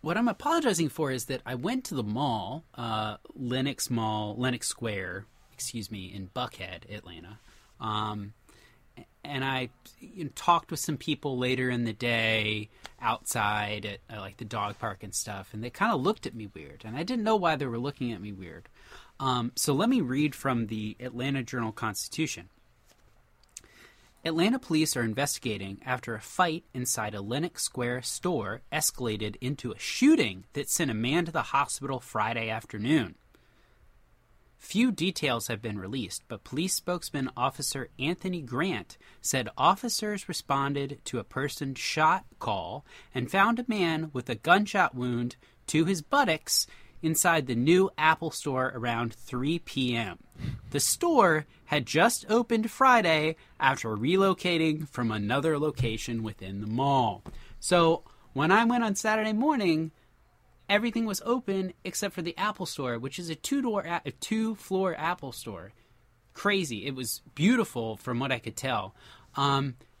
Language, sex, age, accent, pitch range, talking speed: English, male, 20-39, American, 115-170 Hz, 155 wpm